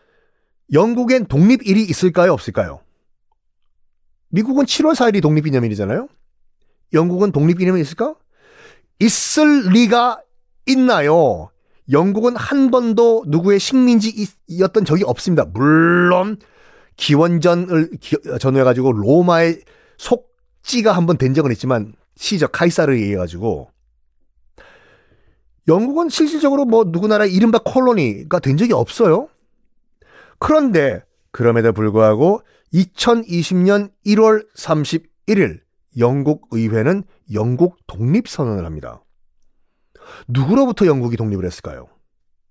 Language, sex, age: Korean, male, 40-59